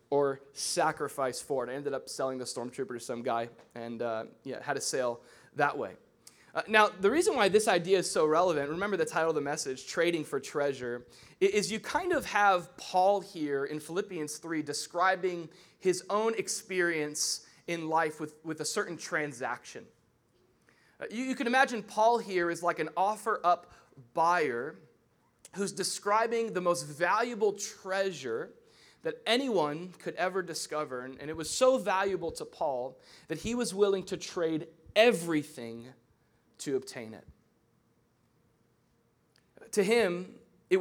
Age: 20-39